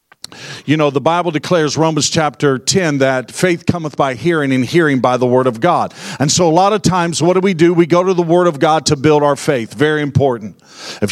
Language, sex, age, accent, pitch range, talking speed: English, male, 50-69, American, 130-165 Hz, 235 wpm